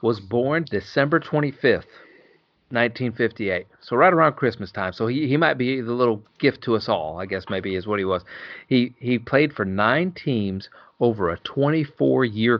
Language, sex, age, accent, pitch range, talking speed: English, male, 40-59, American, 110-140 Hz, 200 wpm